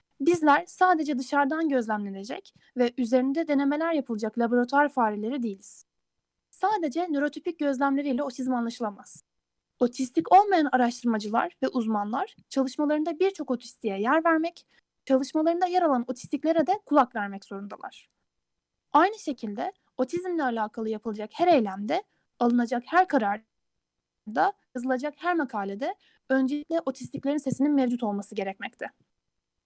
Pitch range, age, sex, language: 230-320 Hz, 10-29, female, Turkish